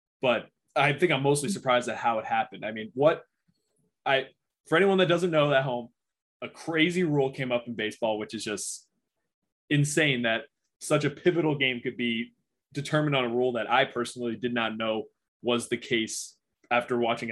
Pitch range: 120-145 Hz